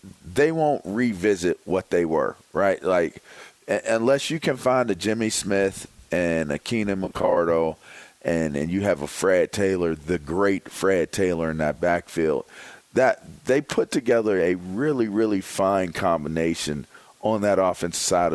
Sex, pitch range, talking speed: male, 90-115 Hz, 150 wpm